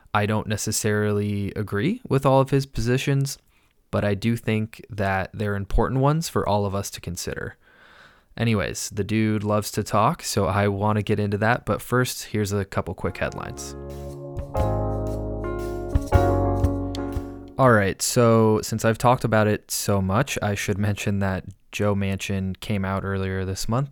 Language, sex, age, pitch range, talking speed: English, male, 20-39, 95-110 Hz, 160 wpm